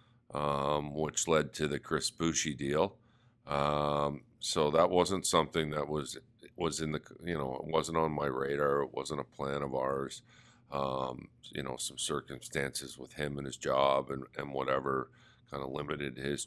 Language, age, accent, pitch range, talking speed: English, 50-69, American, 75-90 Hz, 175 wpm